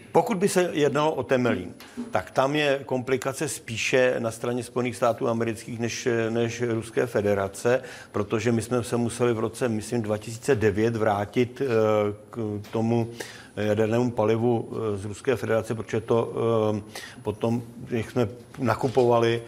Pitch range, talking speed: 105-120 Hz, 135 wpm